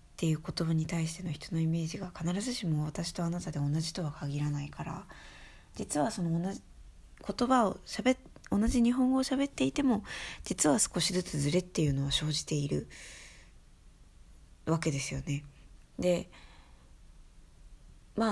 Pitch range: 135-185 Hz